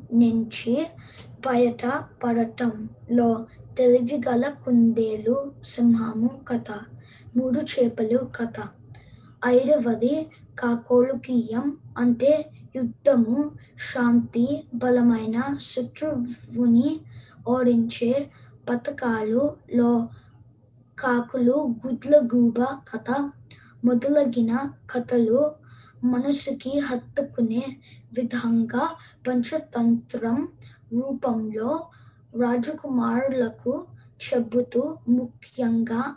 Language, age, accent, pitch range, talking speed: Telugu, 20-39, native, 230-260 Hz, 60 wpm